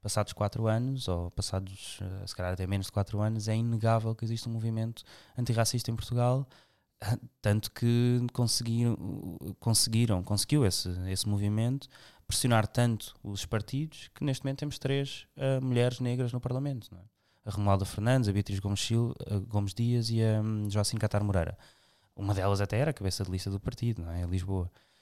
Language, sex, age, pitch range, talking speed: Portuguese, male, 20-39, 100-115 Hz, 170 wpm